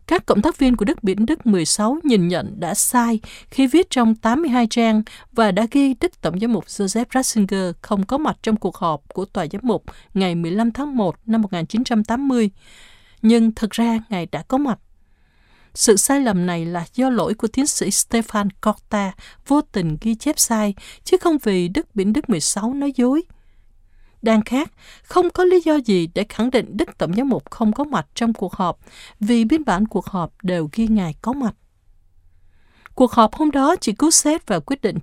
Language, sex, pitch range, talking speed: Vietnamese, female, 190-260 Hz, 200 wpm